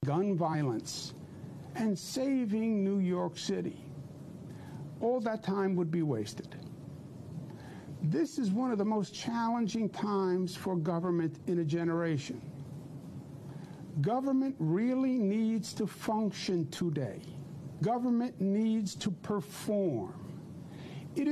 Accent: American